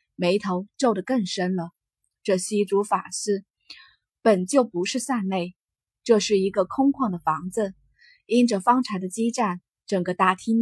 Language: Chinese